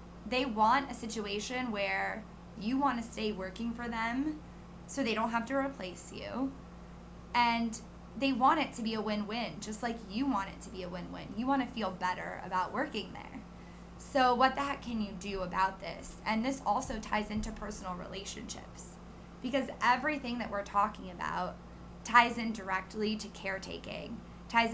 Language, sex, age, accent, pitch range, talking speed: English, female, 10-29, American, 195-240 Hz, 175 wpm